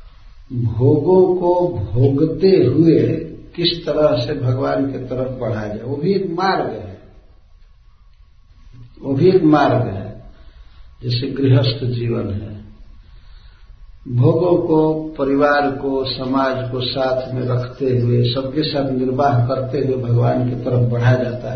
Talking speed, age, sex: 130 wpm, 60-79, male